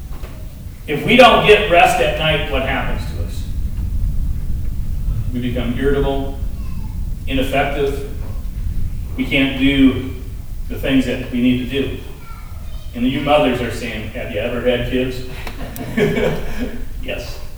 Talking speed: 125 wpm